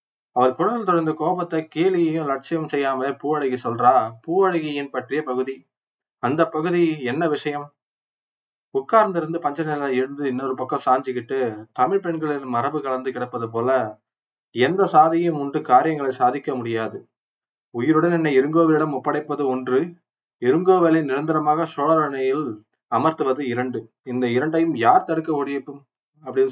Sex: male